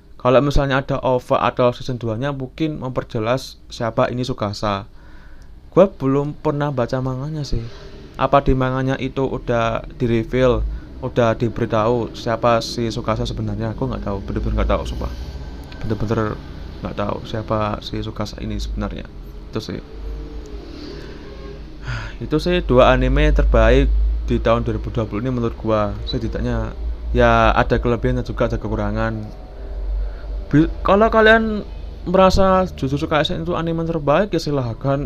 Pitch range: 105-140 Hz